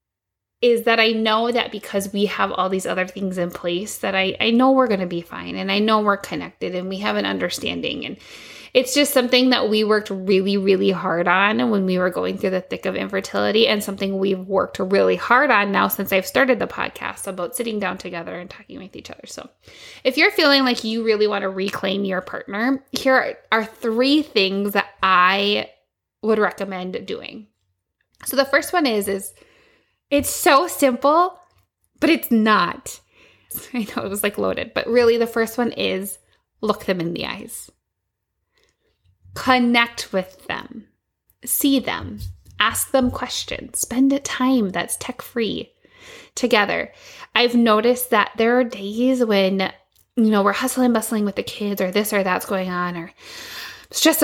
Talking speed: 180 wpm